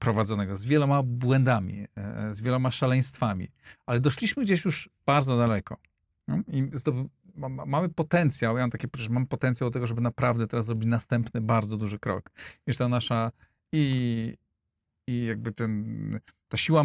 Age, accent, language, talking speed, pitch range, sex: 40-59, native, Polish, 155 wpm, 110-135 Hz, male